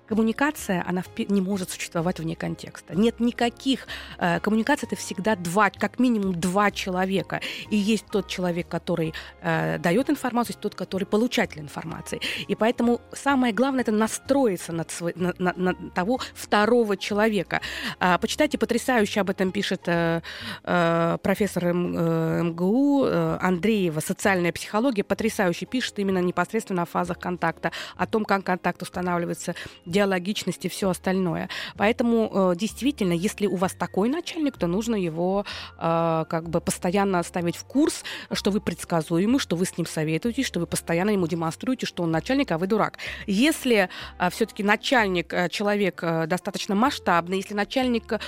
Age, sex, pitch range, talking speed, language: 20-39, female, 175-225 Hz, 135 wpm, Russian